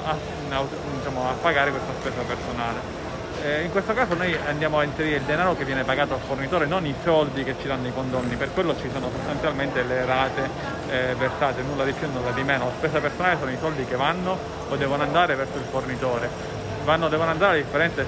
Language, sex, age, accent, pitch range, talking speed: Italian, male, 30-49, native, 130-155 Hz, 220 wpm